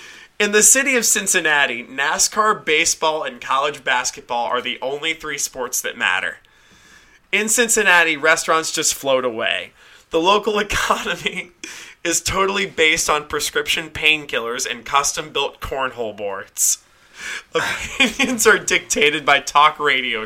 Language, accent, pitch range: English, American, 155-210 Hz